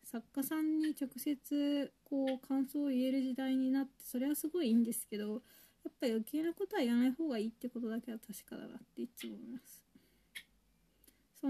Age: 20-39